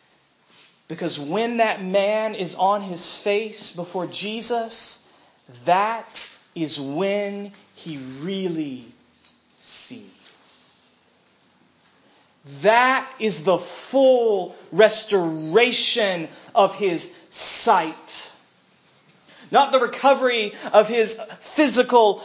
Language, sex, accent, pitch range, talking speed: English, male, American, 195-255 Hz, 80 wpm